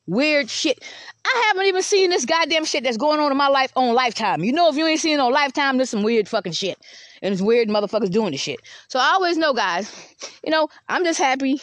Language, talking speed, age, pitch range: English, 250 wpm, 20-39, 255-310 Hz